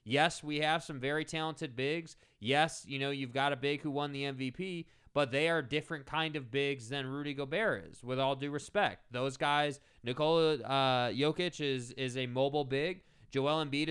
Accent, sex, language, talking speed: American, male, English, 190 wpm